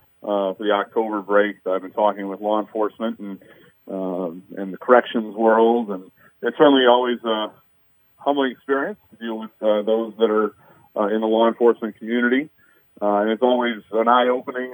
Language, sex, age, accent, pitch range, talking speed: English, male, 40-59, American, 105-125 Hz, 175 wpm